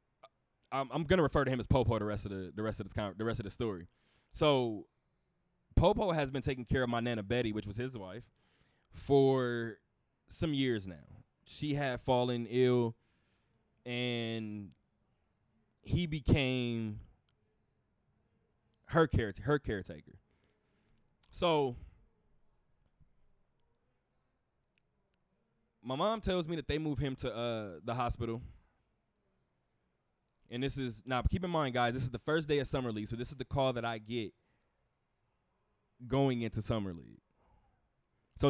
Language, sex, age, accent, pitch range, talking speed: English, male, 20-39, American, 110-130 Hz, 145 wpm